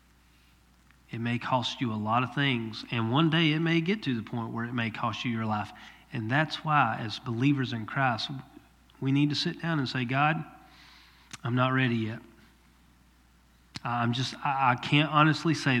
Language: English